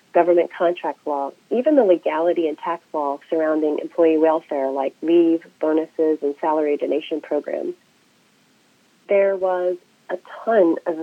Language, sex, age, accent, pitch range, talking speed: English, female, 40-59, American, 165-210 Hz, 130 wpm